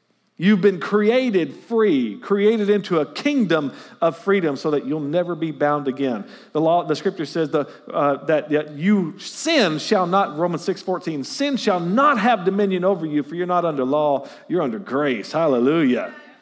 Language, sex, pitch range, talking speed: English, male, 155-210 Hz, 180 wpm